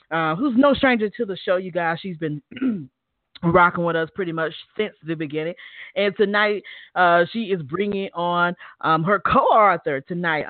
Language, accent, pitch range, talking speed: English, American, 150-195 Hz, 170 wpm